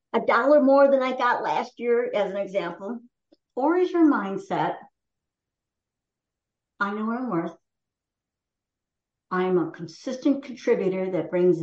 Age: 60-79